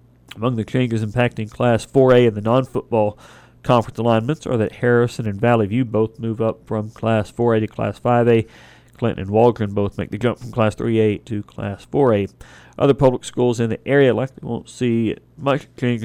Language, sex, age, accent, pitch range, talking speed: English, male, 40-59, American, 105-120 Hz, 185 wpm